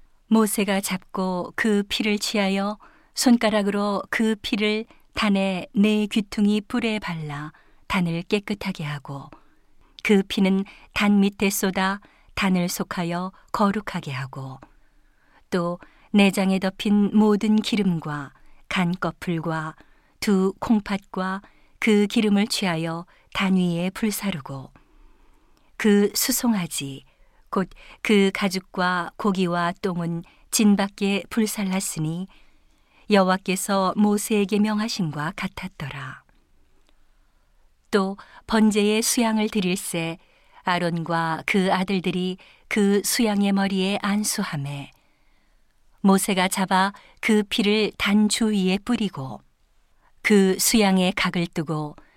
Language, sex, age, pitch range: Korean, female, 50-69, 180-210 Hz